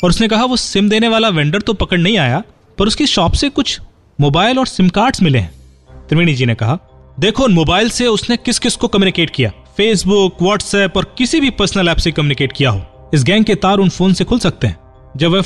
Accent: native